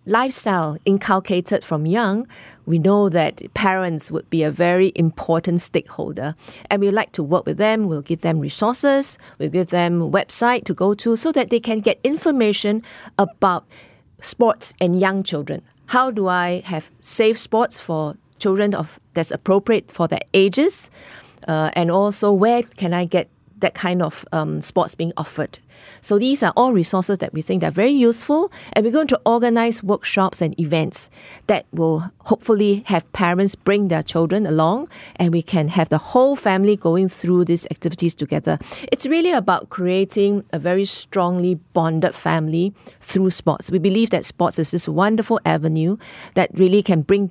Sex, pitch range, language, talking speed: female, 170-220 Hz, English, 170 wpm